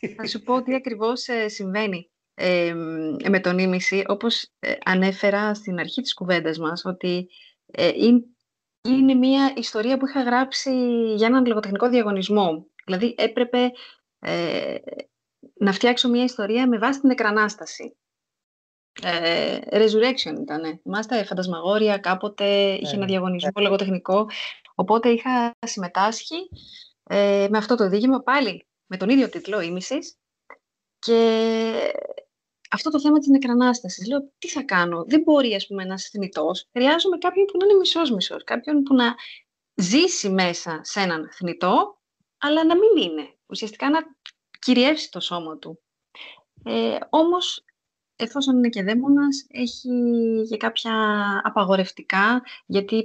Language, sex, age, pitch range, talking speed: Greek, female, 30-49, 190-250 Hz, 130 wpm